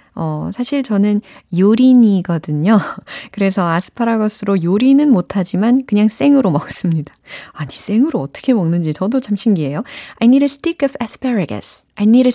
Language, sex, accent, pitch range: Korean, female, native, 155-250 Hz